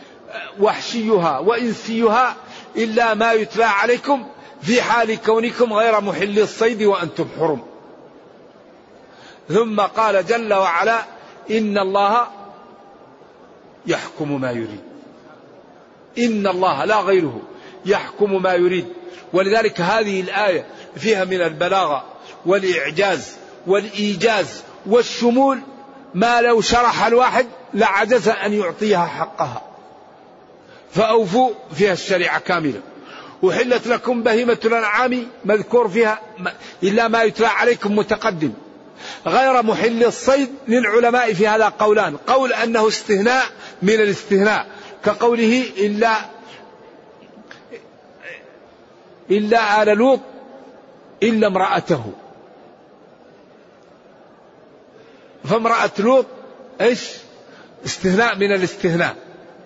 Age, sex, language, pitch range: 50-69, male, Arabic, 200-235 Hz